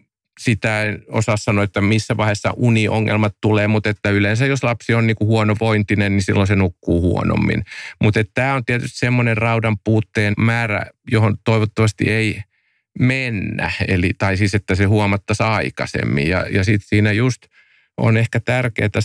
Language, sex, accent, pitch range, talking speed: Finnish, male, native, 100-120 Hz, 160 wpm